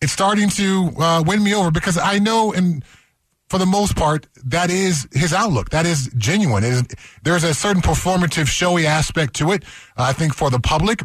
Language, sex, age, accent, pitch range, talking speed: English, male, 30-49, American, 125-165 Hz, 195 wpm